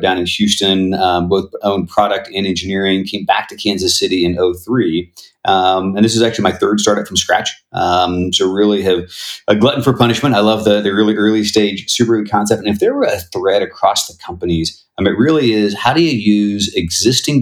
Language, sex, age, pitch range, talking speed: English, male, 40-59, 95-115 Hz, 215 wpm